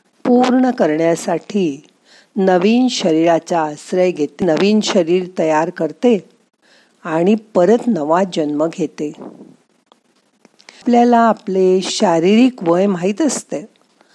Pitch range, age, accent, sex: 165-230 Hz, 50-69, native, female